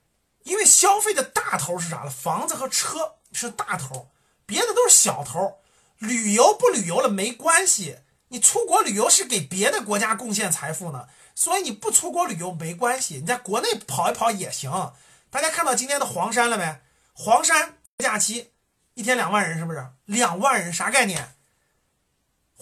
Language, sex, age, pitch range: Chinese, male, 30-49, 190-275 Hz